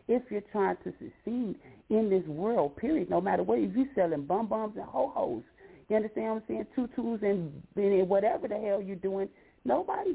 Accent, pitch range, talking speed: American, 155-205 Hz, 185 wpm